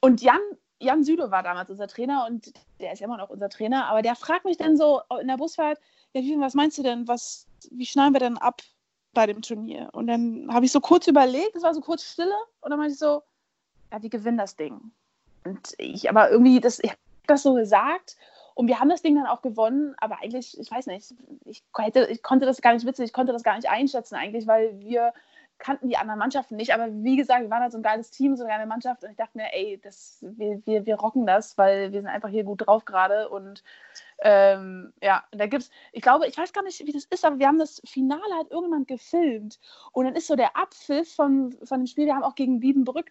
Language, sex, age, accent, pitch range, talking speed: German, female, 20-39, German, 225-300 Hz, 240 wpm